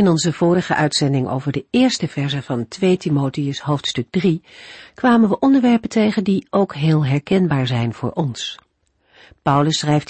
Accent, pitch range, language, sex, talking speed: Dutch, 140-205 Hz, Dutch, female, 155 wpm